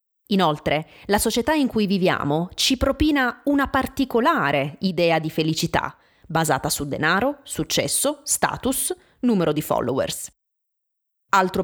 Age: 20-39